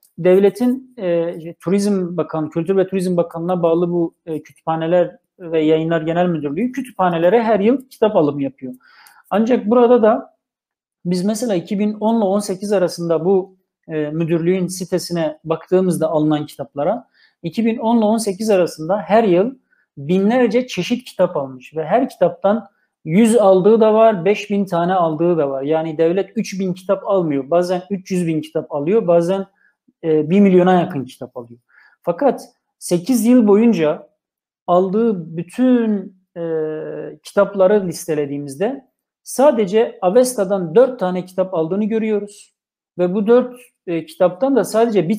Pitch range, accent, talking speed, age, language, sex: 170-220 Hz, native, 130 wpm, 40-59, Turkish, male